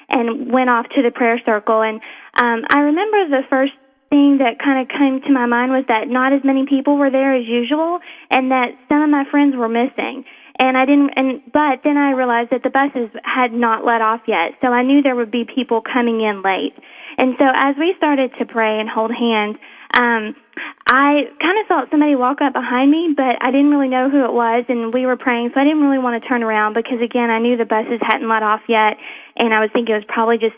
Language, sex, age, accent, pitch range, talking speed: English, female, 20-39, American, 225-270 Hz, 240 wpm